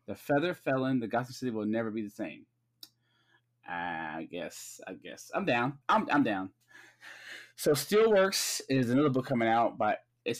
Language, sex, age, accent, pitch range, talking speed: English, male, 20-39, American, 115-145 Hz, 165 wpm